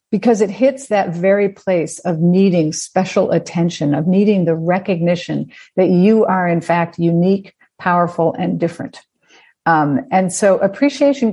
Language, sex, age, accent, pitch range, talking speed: English, female, 50-69, American, 170-220 Hz, 145 wpm